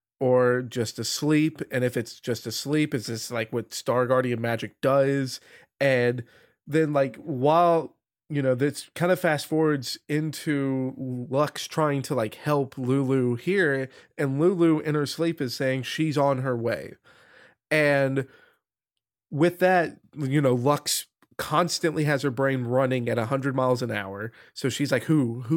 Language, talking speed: English, 155 wpm